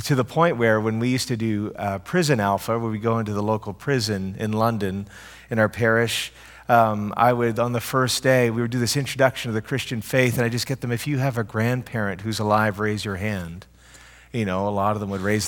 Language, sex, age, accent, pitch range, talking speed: English, male, 40-59, American, 105-125 Hz, 245 wpm